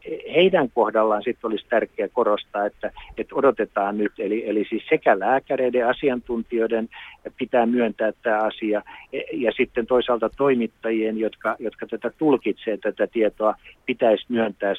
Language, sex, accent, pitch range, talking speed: Finnish, male, native, 105-130 Hz, 125 wpm